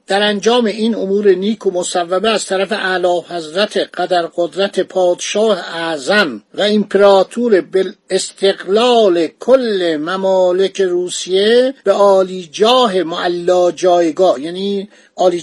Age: 50-69